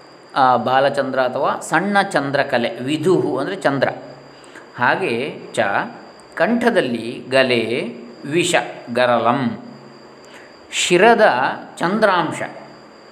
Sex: male